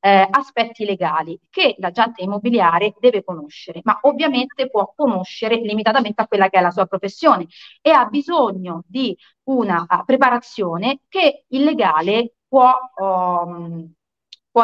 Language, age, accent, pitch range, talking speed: Italian, 30-49, native, 185-255 Hz, 125 wpm